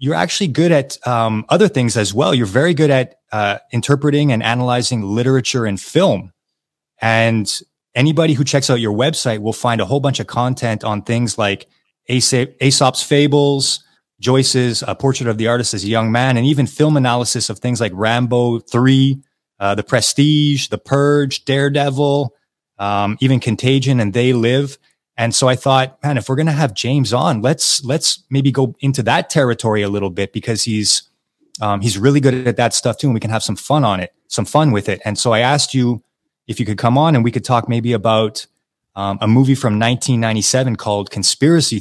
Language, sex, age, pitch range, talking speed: English, male, 30-49, 110-135 Hz, 200 wpm